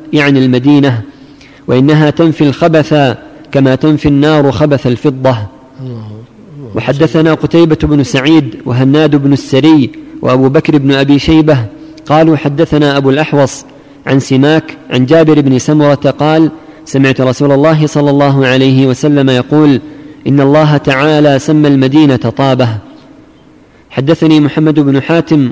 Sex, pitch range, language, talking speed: male, 135-155 Hz, Arabic, 120 wpm